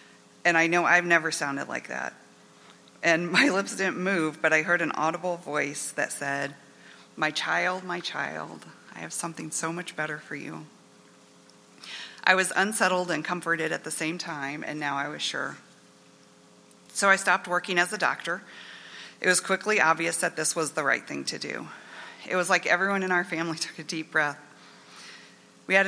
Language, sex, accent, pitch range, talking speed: English, female, American, 155-180 Hz, 185 wpm